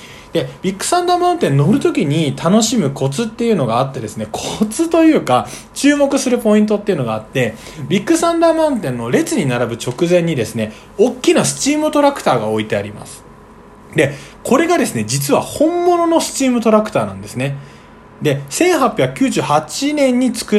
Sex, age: male, 20-39